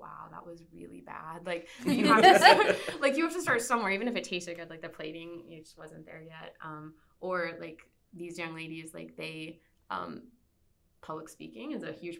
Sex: female